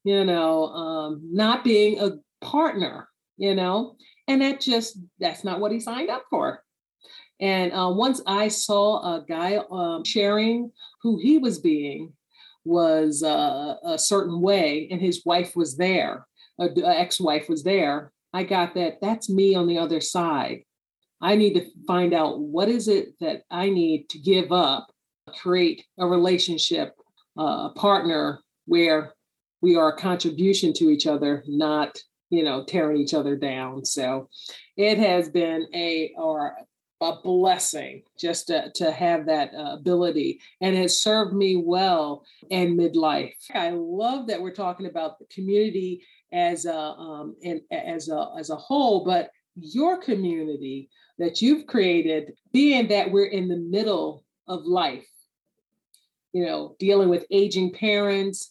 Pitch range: 170-220 Hz